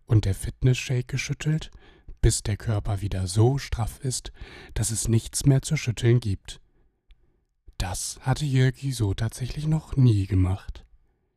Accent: German